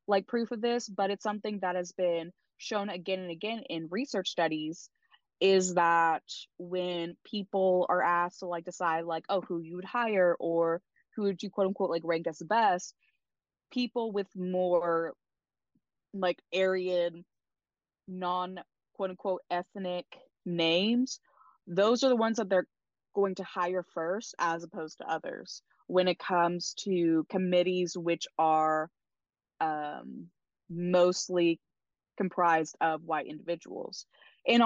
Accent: American